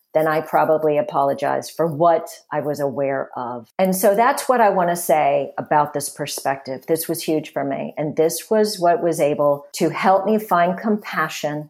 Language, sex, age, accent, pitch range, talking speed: English, female, 40-59, American, 155-180 Hz, 190 wpm